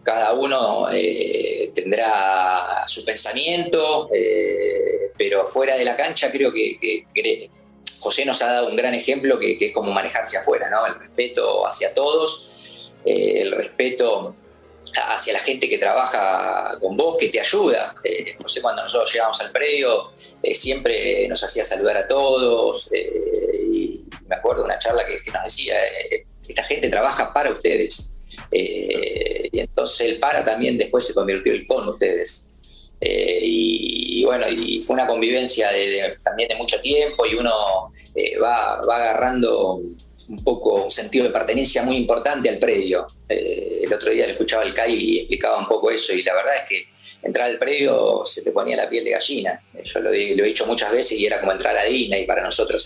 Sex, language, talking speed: male, English, 185 wpm